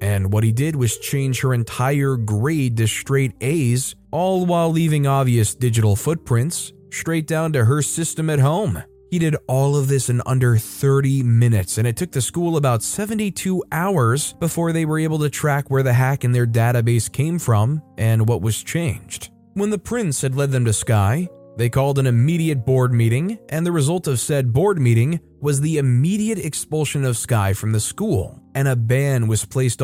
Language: English